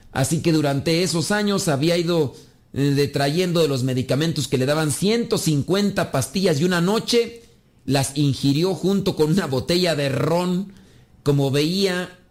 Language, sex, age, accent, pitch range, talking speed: Spanish, male, 40-59, Mexican, 135-175 Hz, 140 wpm